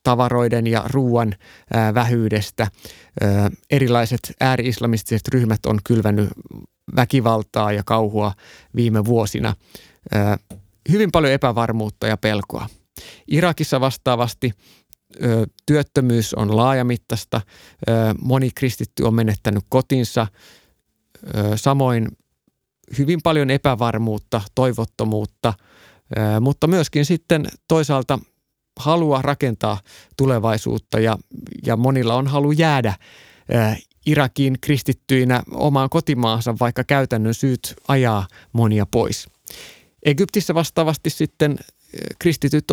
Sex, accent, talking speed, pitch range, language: male, native, 85 wpm, 110-135 Hz, Finnish